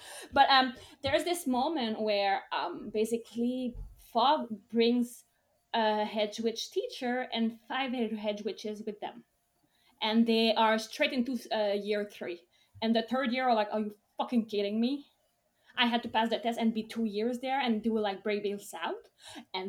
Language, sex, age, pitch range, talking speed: English, female, 20-39, 215-265 Hz, 170 wpm